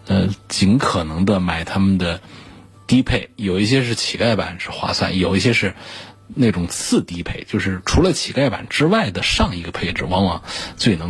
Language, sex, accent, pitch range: Chinese, male, native, 90-105 Hz